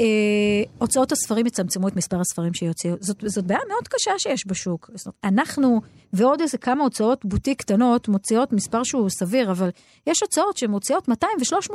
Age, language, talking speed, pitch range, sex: 30-49, Hebrew, 160 wpm, 200-280 Hz, female